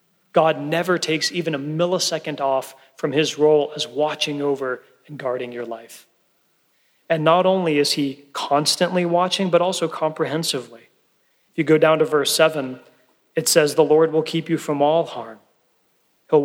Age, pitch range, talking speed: 30-49, 145-175 Hz, 165 wpm